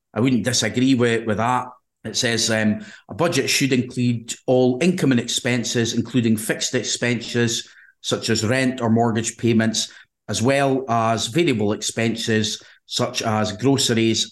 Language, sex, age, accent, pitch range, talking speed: English, male, 30-49, British, 110-130 Hz, 145 wpm